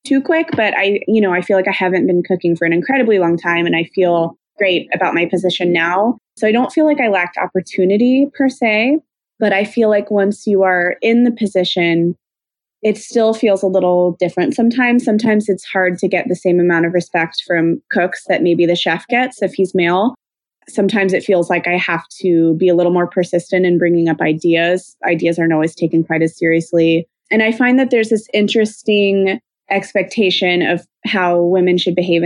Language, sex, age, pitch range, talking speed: English, female, 20-39, 175-205 Hz, 205 wpm